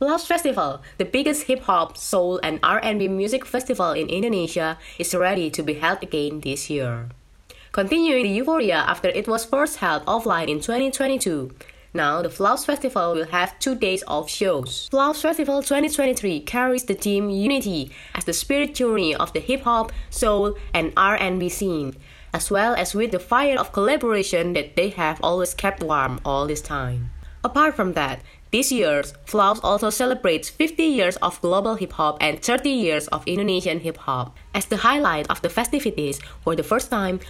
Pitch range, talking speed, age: 165-255 Hz, 170 wpm, 20-39